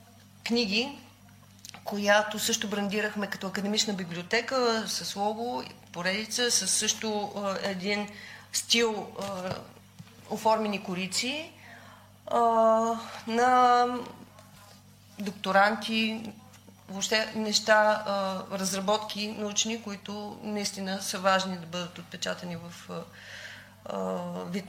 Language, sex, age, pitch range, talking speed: Bulgarian, female, 40-59, 175-220 Hz, 75 wpm